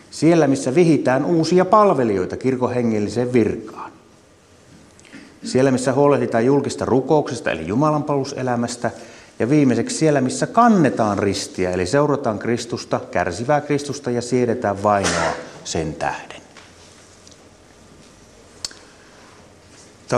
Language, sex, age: Finnish, male, 30-49